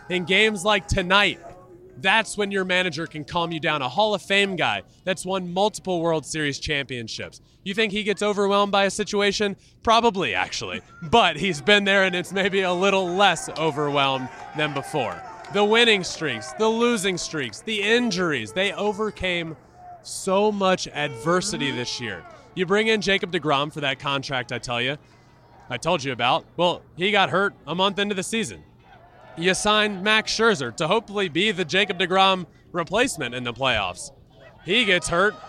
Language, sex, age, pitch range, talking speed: English, male, 20-39, 145-210 Hz, 170 wpm